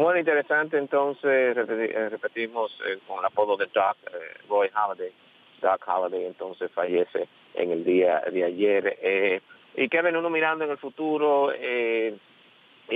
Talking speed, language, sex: 150 wpm, English, male